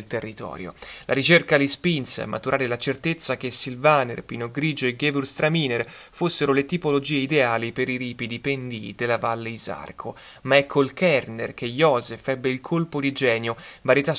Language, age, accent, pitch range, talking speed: Italian, 30-49, native, 125-150 Hz, 160 wpm